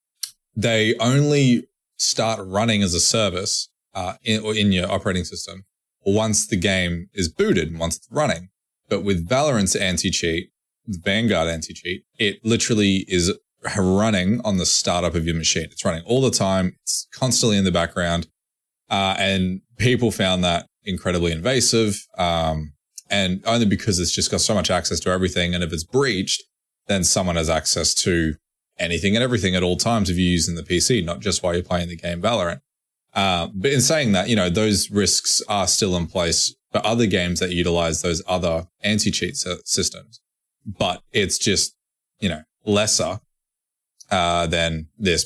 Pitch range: 85-110 Hz